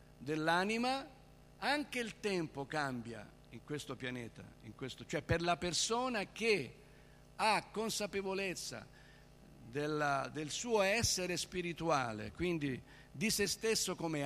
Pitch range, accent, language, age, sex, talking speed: 145-190 Hz, native, Italian, 50-69, male, 115 wpm